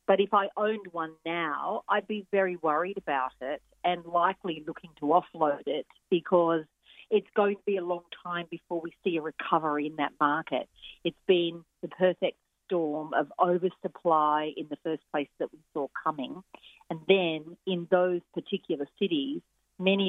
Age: 50-69